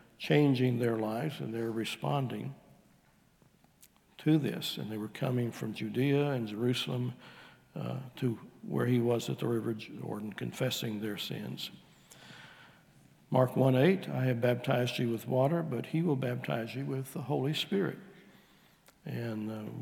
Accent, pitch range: American, 115-140 Hz